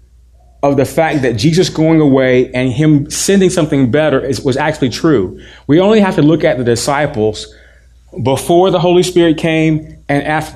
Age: 30-49